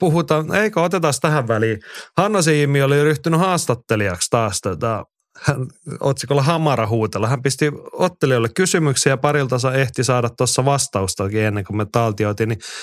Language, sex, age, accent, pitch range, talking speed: Finnish, male, 30-49, native, 110-150 Hz, 145 wpm